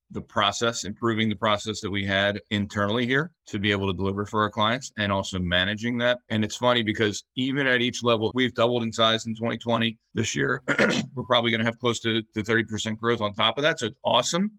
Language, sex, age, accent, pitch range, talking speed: English, male, 30-49, American, 105-120 Hz, 230 wpm